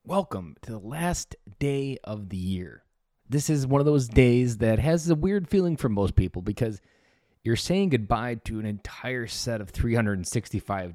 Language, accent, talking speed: English, American, 175 wpm